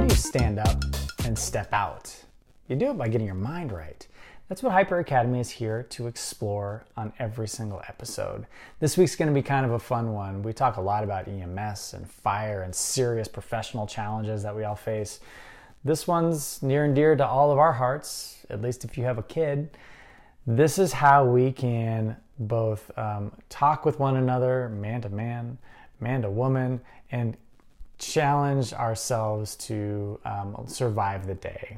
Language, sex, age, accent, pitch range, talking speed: English, male, 20-39, American, 105-130 Hz, 180 wpm